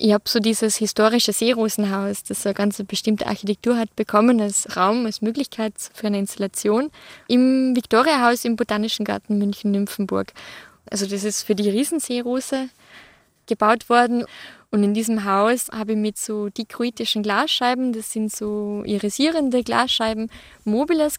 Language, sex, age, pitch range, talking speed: German, female, 20-39, 210-245 Hz, 140 wpm